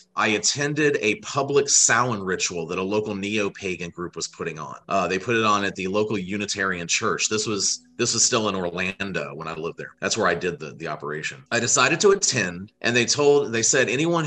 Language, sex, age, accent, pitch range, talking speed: Portuguese, male, 30-49, American, 95-120 Hz, 220 wpm